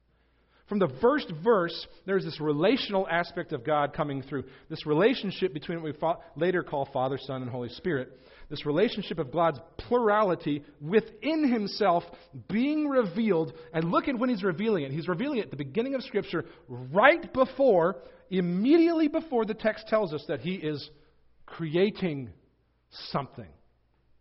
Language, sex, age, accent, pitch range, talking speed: English, male, 40-59, American, 145-200 Hz, 150 wpm